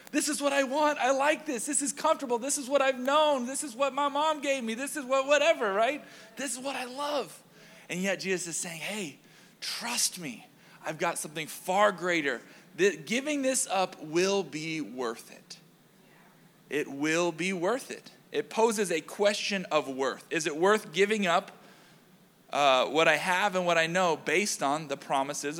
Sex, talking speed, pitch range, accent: male, 190 wpm, 180-250 Hz, American